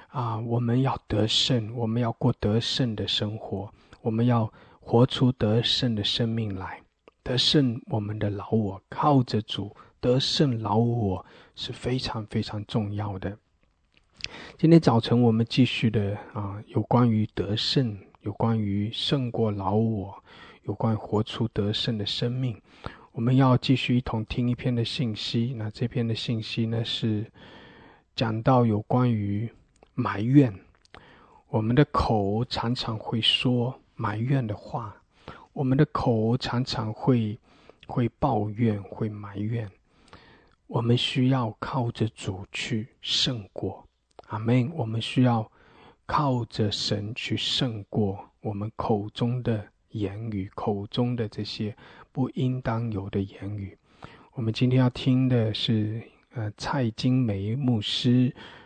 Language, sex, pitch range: English, male, 105-125 Hz